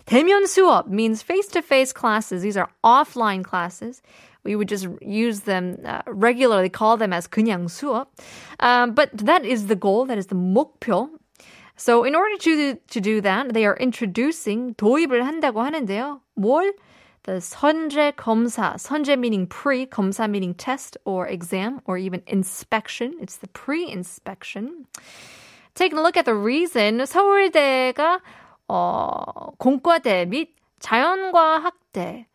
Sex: female